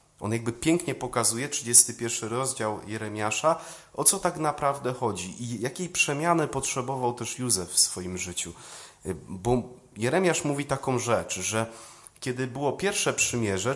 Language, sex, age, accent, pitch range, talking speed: Polish, male, 30-49, native, 105-140 Hz, 135 wpm